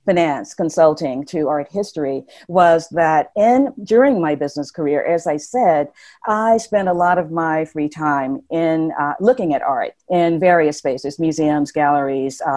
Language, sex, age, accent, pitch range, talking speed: English, female, 50-69, American, 155-195 Hz, 160 wpm